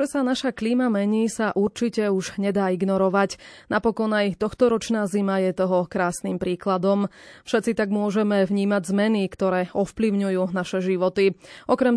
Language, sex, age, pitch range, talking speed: Slovak, female, 20-39, 190-225 Hz, 135 wpm